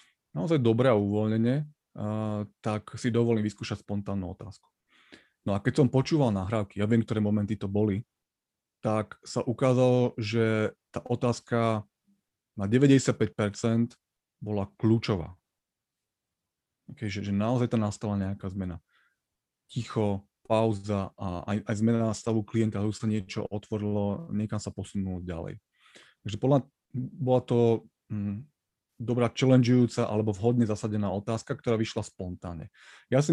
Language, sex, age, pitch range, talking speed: Slovak, male, 30-49, 105-125 Hz, 130 wpm